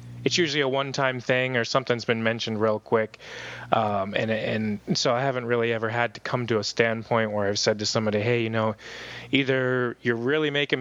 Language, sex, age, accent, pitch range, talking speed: English, male, 30-49, American, 110-130 Hz, 210 wpm